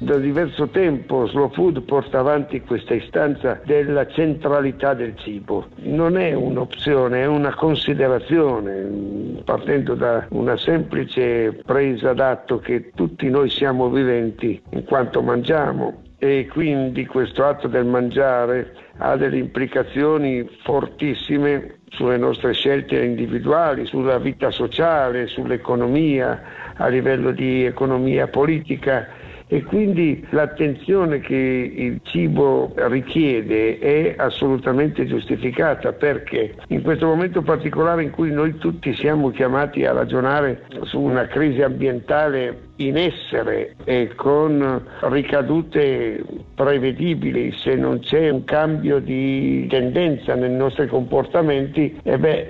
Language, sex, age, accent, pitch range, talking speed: Italian, male, 60-79, native, 125-150 Hz, 115 wpm